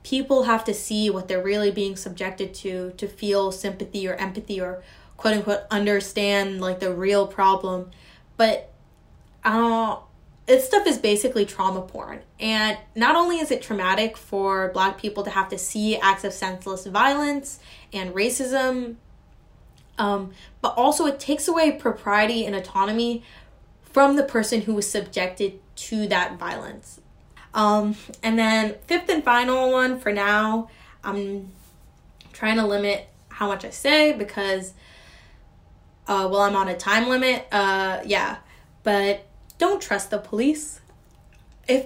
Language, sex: English, female